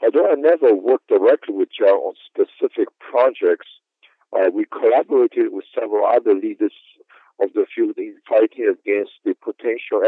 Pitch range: 345-455 Hz